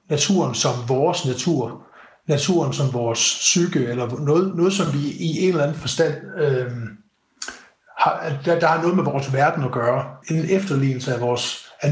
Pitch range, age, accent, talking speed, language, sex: 125-160 Hz, 60-79, native, 165 wpm, Danish, male